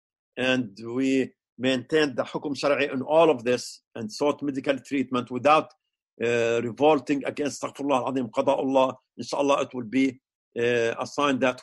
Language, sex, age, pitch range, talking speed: English, male, 50-69, 125-155 Hz, 135 wpm